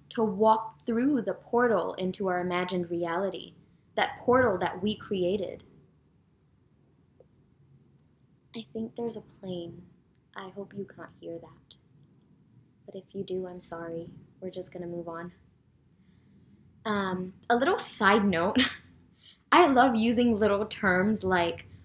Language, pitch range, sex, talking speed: English, 180-235 Hz, female, 130 wpm